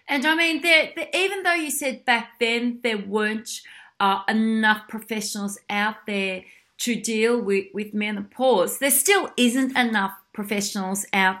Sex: female